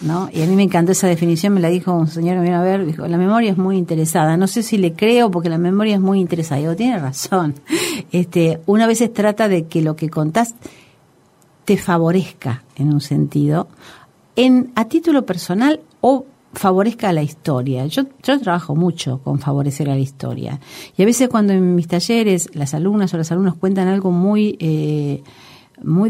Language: Spanish